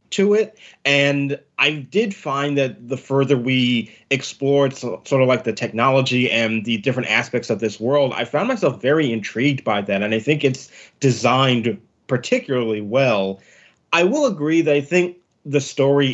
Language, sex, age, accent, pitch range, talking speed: English, male, 20-39, American, 120-150 Hz, 165 wpm